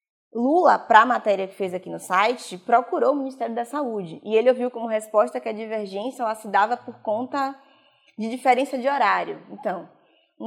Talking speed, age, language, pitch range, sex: 190 wpm, 20-39, Portuguese, 215-270 Hz, female